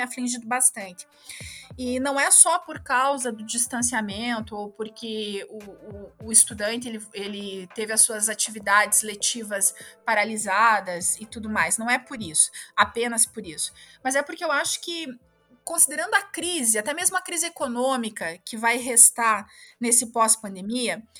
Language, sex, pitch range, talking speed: Portuguese, female, 220-270 Hz, 150 wpm